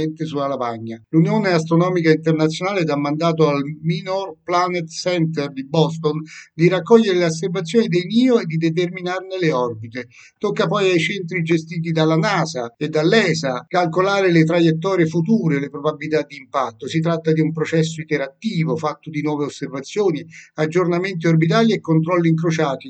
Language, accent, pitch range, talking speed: Italian, native, 155-185 Hz, 150 wpm